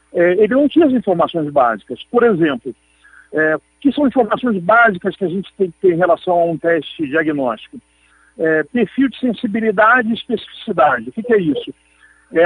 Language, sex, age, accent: Portuguese, male, 50-69, Brazilian